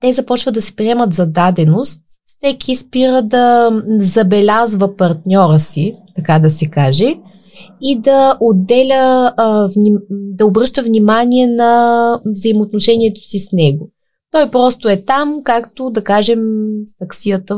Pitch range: 200-245 Hz